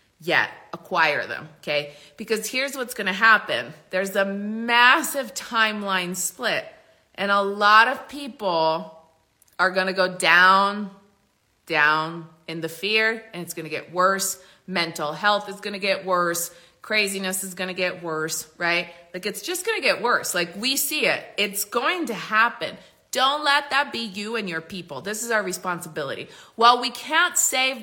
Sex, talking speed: female, 175 wpm